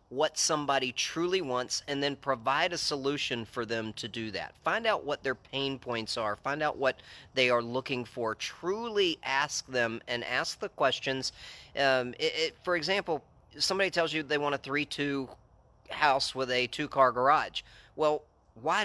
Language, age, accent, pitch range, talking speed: English, 40-59, American, 115-145 Hz, 170 wpm